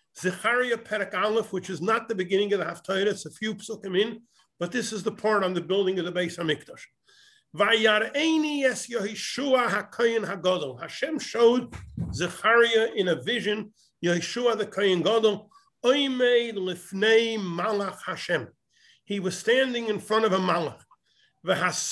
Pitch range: 185-235 Hz